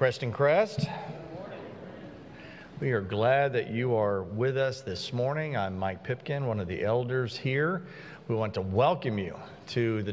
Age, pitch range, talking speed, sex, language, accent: 40-59, 110-140 Hz, 160 wpm, male, English, American